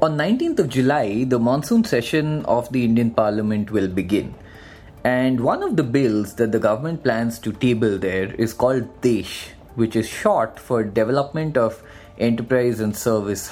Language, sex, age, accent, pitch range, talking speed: English, male, 30-49, Indian, 110-145 Hz, 165 wpm